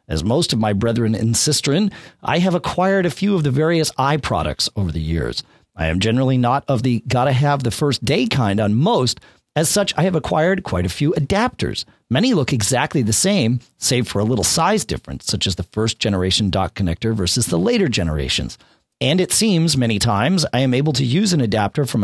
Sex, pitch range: male, 105-150 Hz